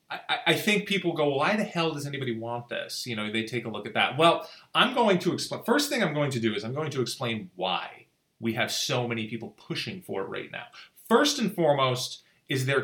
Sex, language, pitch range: male, English, 115-150 Hz